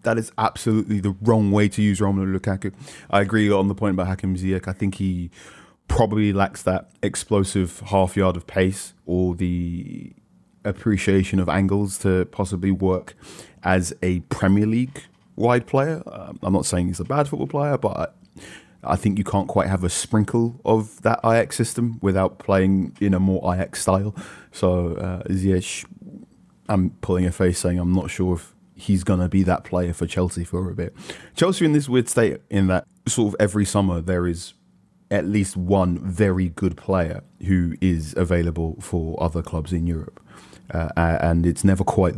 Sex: male